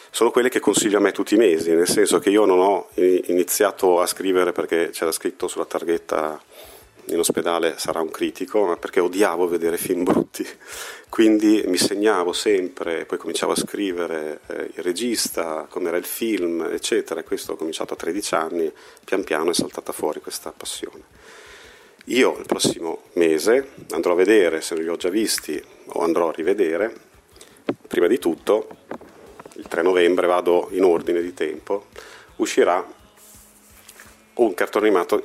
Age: 40-59